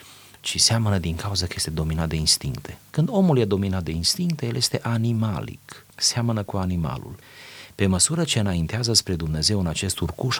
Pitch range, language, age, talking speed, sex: 90-125 Hz, Romanian, 30-49, 175 wpm, male